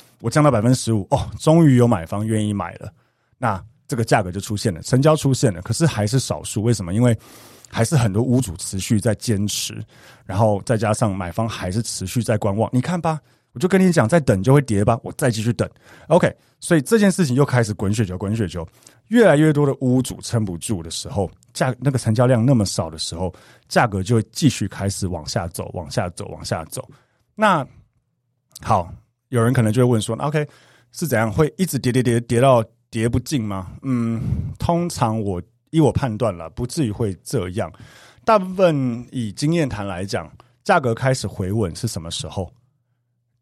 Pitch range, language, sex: 105-130 Hz, Chinese, male